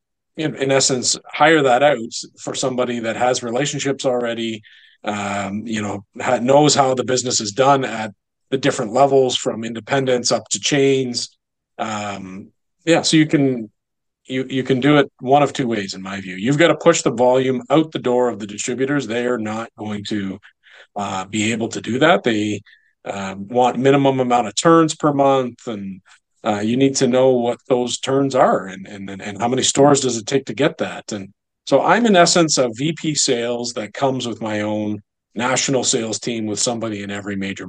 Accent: American